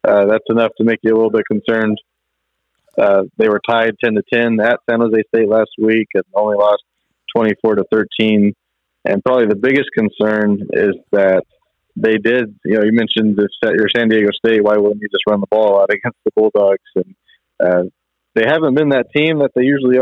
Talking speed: 195 wpm